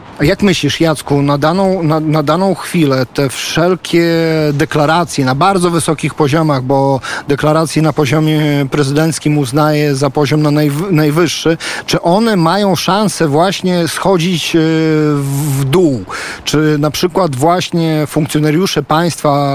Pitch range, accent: 140-165 Hz, native